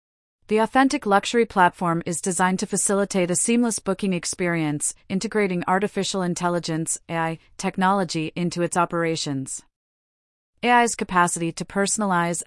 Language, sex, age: English, female, 30-49